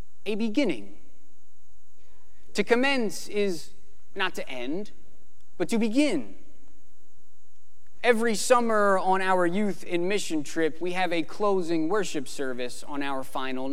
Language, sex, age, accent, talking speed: English, male, 30-49, American, 120 wpm